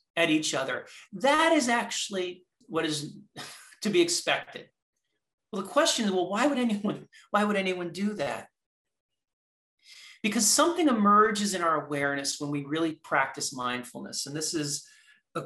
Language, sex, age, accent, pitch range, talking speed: English, male, 40-59, American, 145-195 Hz, 150 wpm